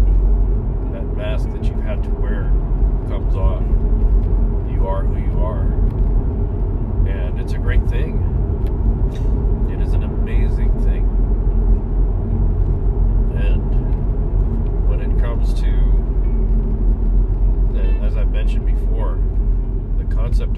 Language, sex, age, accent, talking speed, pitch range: English, male, 40-59, American, 100 wpm, 80-105 Hz